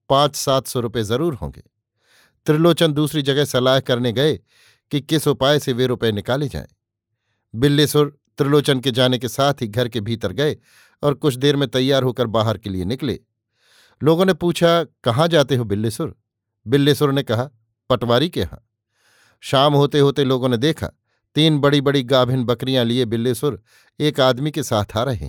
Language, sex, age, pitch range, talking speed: Hindi, male, 50-69, 115-150 Hz, 175 wpm